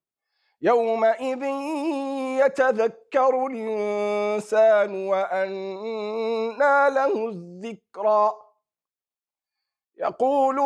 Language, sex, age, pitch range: German, male, 50-69, 210-275 Hz